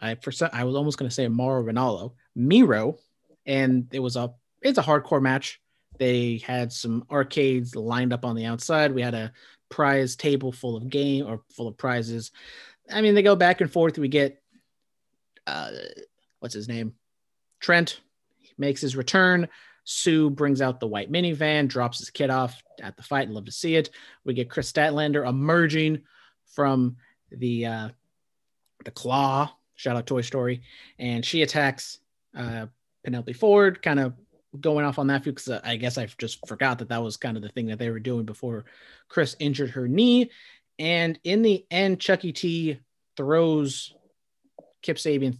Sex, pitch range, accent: male, 125-155 Hz, American